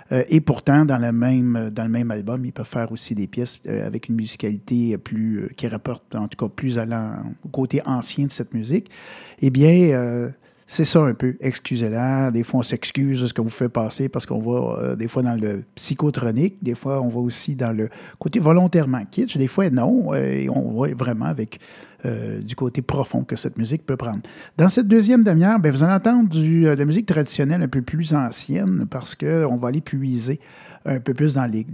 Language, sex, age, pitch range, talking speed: French, male, 50-69, 120-150 Hz, 225 wpm